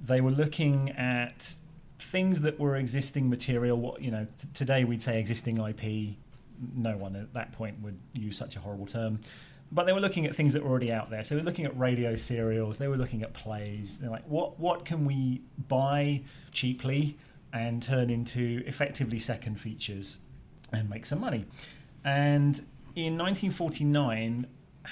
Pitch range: 110-140 Hz